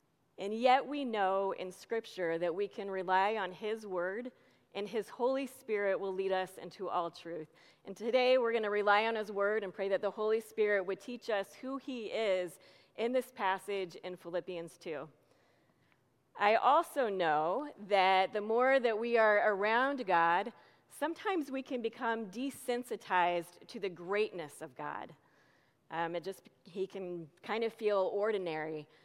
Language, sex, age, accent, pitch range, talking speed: English, female, 40-59, American, 190-245 Hz, 165 wpm